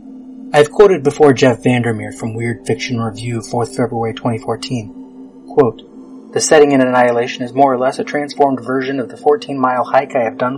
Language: English